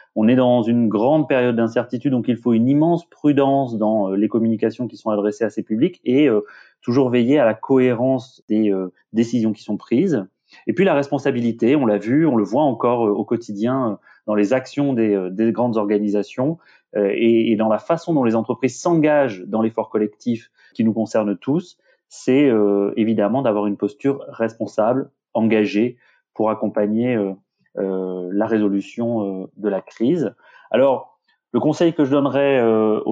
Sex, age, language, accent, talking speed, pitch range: male, 30-49, French, French, 175 wpm, 105-125 Hz